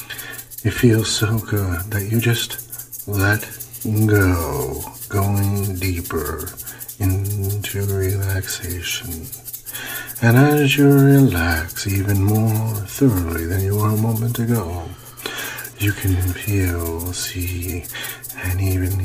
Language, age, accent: English, 50-69, American